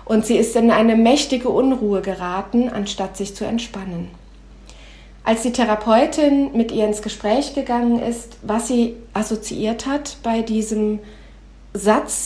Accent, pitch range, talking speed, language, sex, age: German, 205-235 Hz, 135 wpm, German, female, 40-59